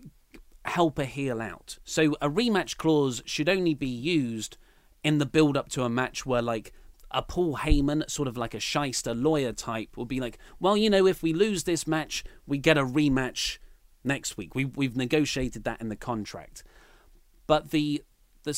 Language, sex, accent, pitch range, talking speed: English, male, British, 130-175 Hz, 180 wpm